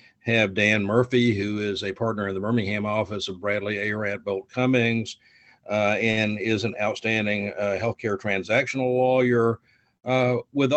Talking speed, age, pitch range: 150 wpm, 50-69, 105-125 Hz